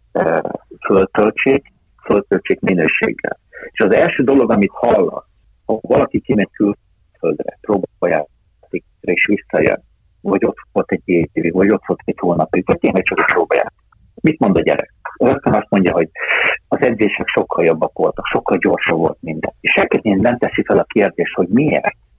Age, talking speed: 50-69, 150 wpm